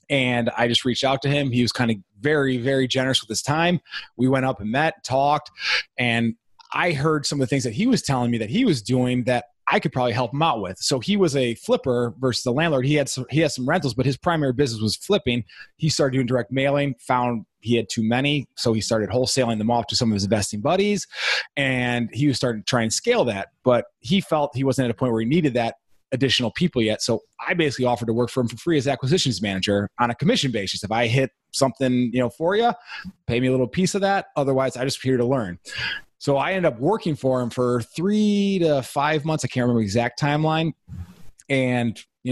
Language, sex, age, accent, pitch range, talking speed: English, male, 30-49, American, 120-150 Hz, 245 wpm